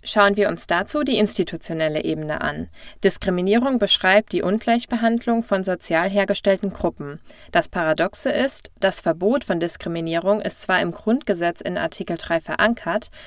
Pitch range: 170-210 Hz